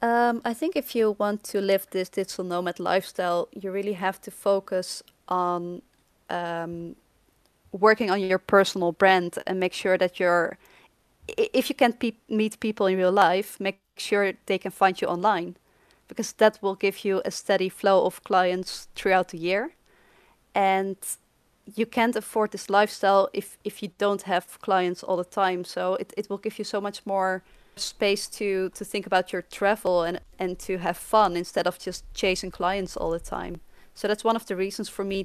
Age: 20-39